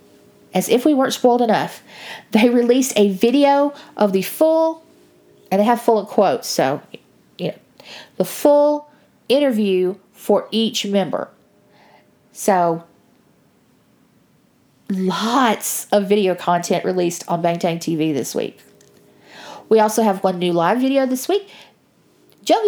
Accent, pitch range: American, 180-245 Hz